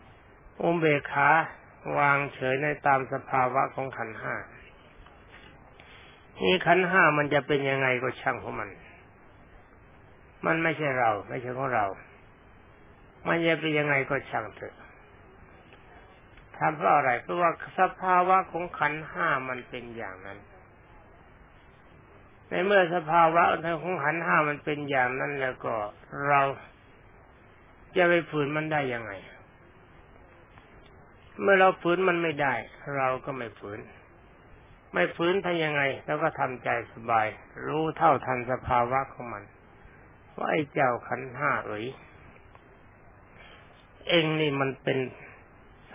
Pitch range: 120-155 Hz